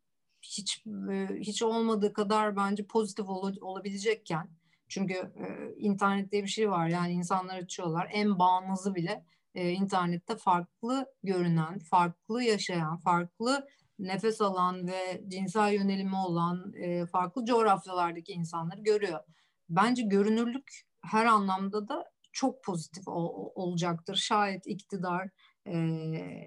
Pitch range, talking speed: 175-220 Hz, 115 wpm